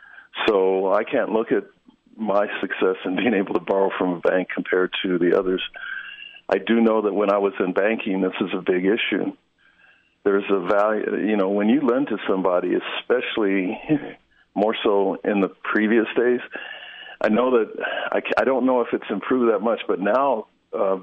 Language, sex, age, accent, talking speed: English, male, 50-69, American, 185 wpm